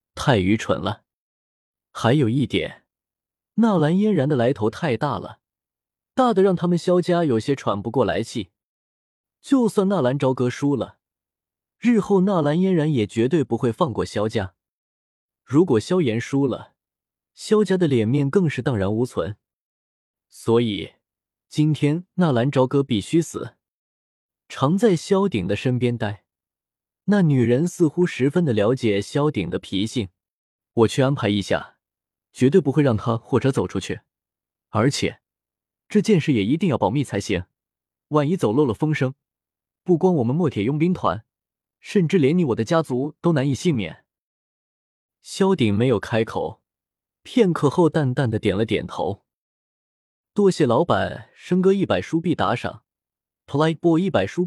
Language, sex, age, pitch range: Chinese, male, 20-39, 110-175 Hz